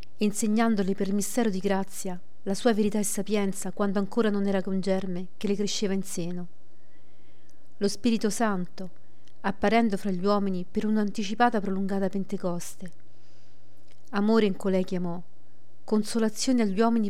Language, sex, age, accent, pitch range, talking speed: Italian, female, 40-59, native, 180-215 Hz, 145 wpm